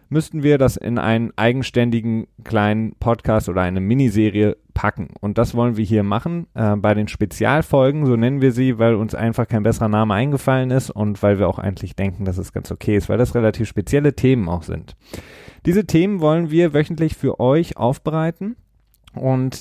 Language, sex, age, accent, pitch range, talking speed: German, male, 30-49, German, 105-135 Hz, 185 wpm